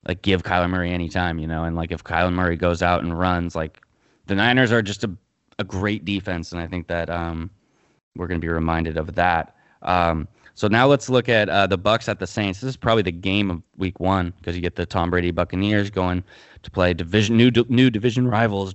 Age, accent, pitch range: 20-39, American, 85-105 Hz